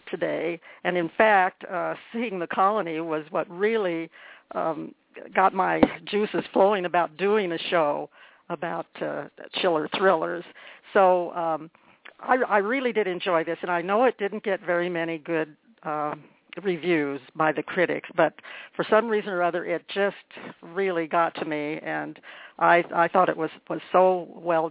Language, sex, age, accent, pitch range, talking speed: English, female, 60-79, American, 165-200 Hz, 165 wpm